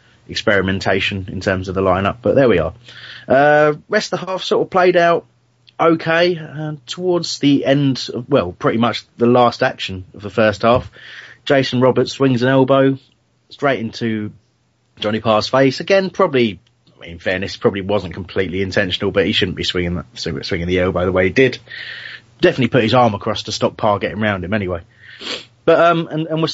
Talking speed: 195 wpm